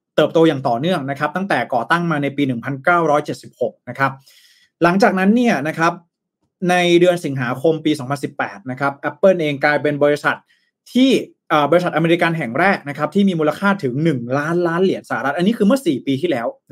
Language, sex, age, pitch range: Thai, male, 20-39, 145-200 Hz